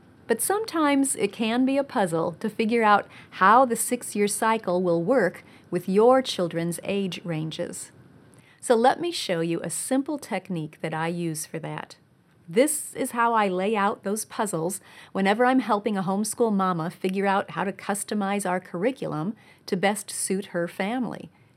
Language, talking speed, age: English, 165 wpm, 40-59